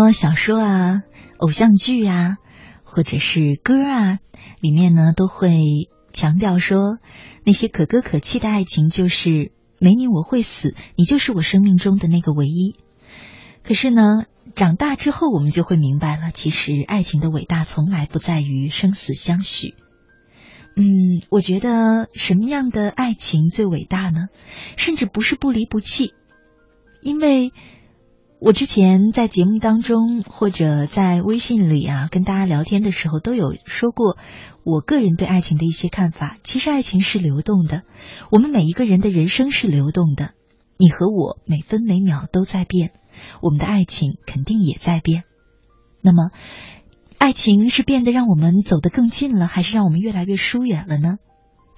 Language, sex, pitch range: Chinese, female, 165-220 Hz